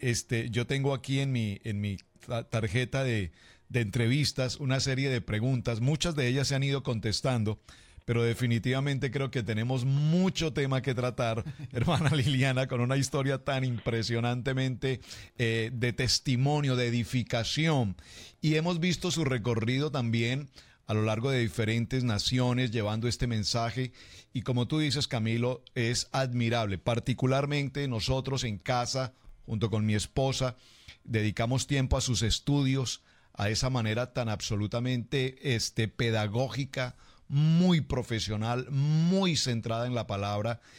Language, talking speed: English, 130 wpm